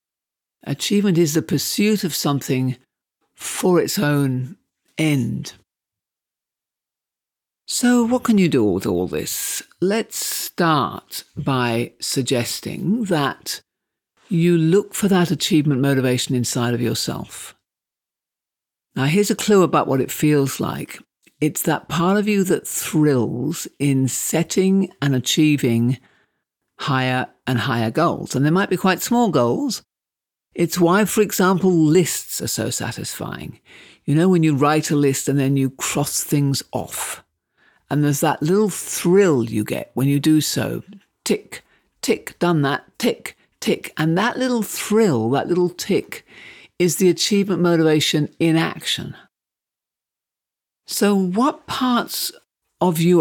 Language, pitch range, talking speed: English, 135-185 Hz, 135 wpm